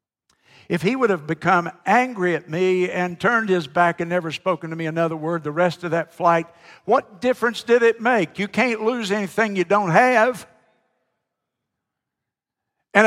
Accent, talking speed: American, 170 wpm